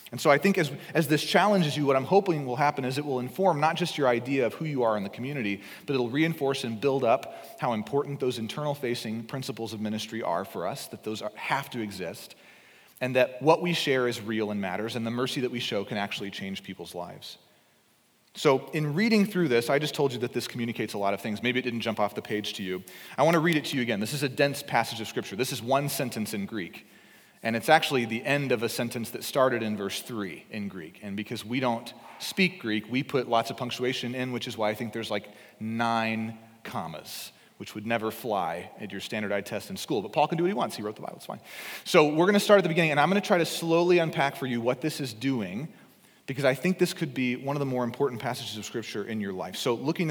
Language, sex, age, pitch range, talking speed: English, male, 30-49, 110-155 Hz, 260 wpm